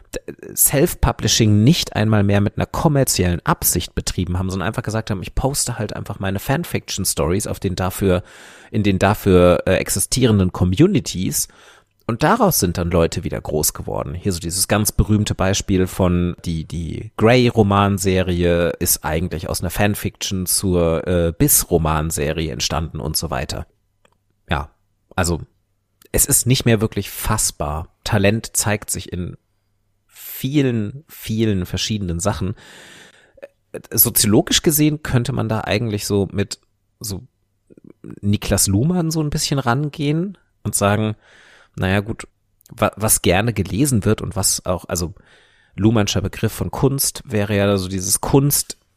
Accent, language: German, German